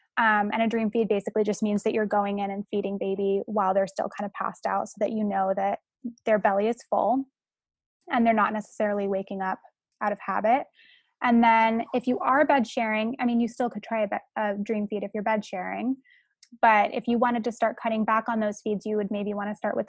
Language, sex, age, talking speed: English, female, 10-29, 240 wpm